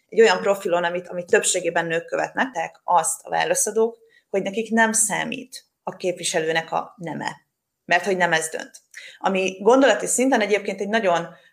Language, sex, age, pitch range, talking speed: Hungarian, female, 30-49, 170-210 Hz, 160 wpm